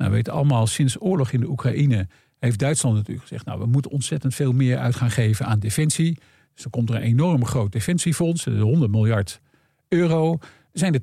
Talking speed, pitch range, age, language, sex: 205 wpm, 120-155 Hz, 50-69, Dutch, male